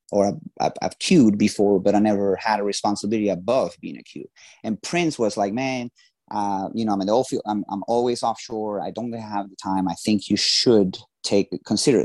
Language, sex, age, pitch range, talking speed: English, male, 30-49, 100-120 Hz, 195 wpm